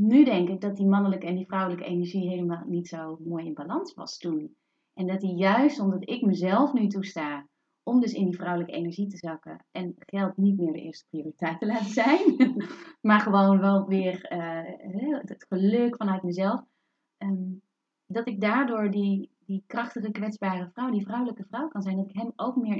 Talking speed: 190 wpm